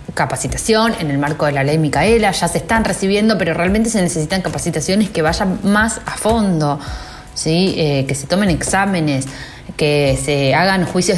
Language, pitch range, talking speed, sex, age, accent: Spanish, 145-200 Hz, 170 wpm, female, 20-39, Argentinian